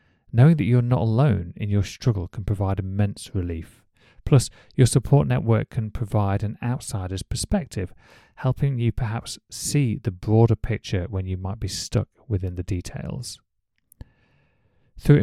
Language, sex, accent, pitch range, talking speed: English, male, British, 95-120 Hz, 145 wpm